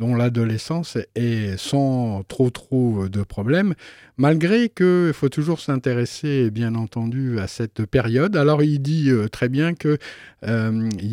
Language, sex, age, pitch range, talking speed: French, male, 50-69, 115-145 Hz, 130 wpm